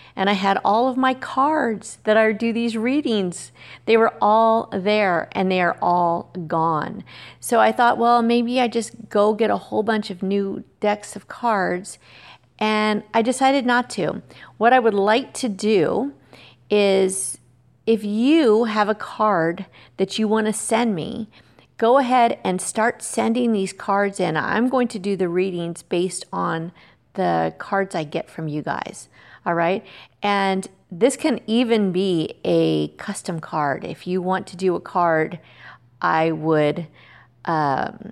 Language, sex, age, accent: English, female, 40-59, American